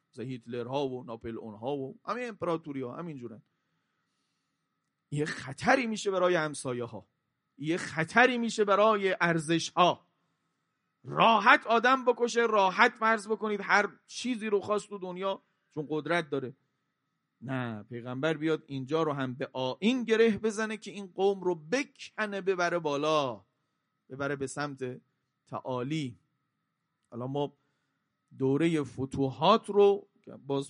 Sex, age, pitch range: male, 40-59, 135-200 Hz